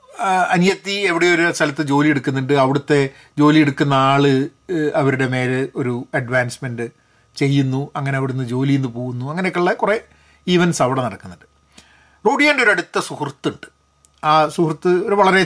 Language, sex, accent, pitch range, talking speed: Malayalam, male, native, 135-190 Hz, 125 wpm